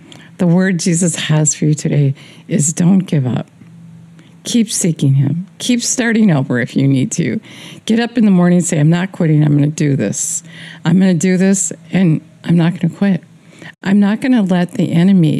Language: English